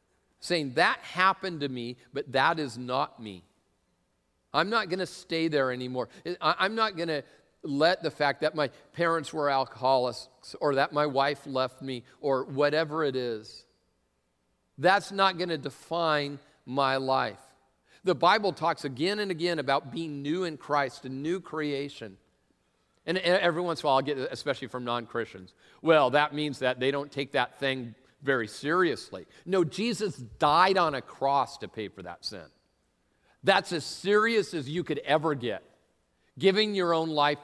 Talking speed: 170 wpm